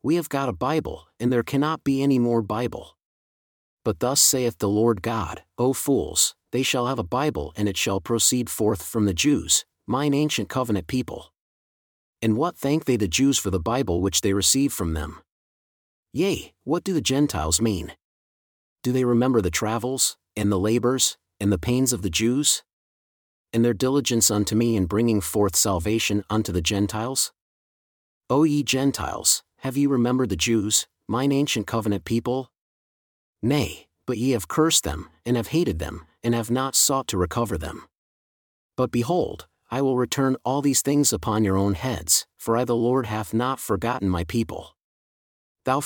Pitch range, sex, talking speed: 100-130 Hz, male, 175 wpm